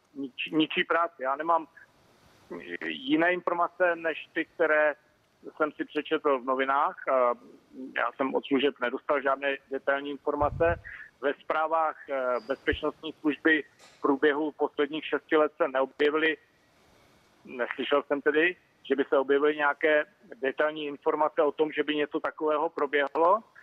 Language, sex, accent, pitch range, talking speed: Czech, male, native, 140-165 Hz, 130 wpm